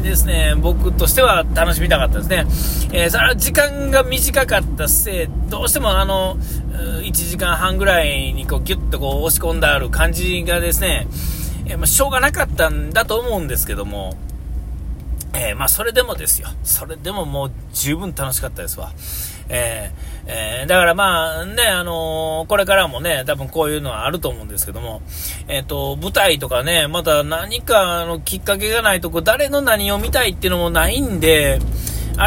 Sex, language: male, Japanese